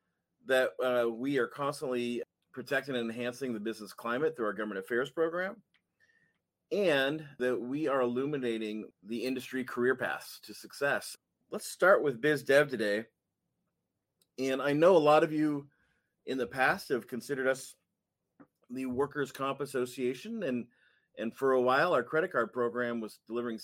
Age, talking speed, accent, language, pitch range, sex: 30-49, 150 wpm, American, English, 115-135 Hz, male